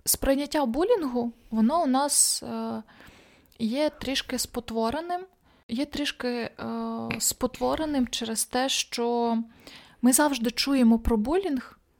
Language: Ukrainian